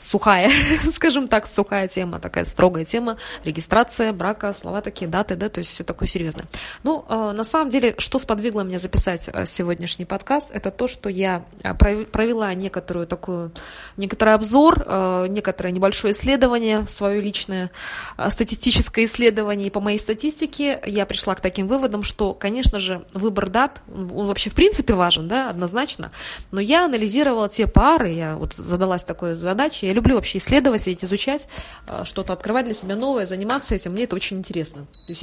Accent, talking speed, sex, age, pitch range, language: native, 155 wpm, female, 20-39, 185-235 Hz, Russian